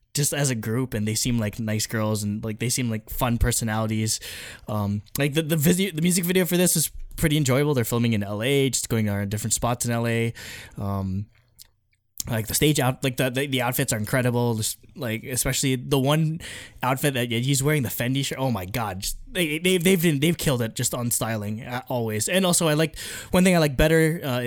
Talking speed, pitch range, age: 225 wpm, 115-150 Hz, 10-29